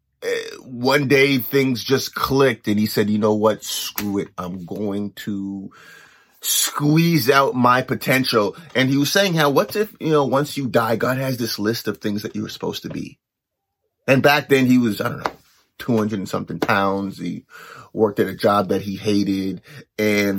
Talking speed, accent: 190 wpm, American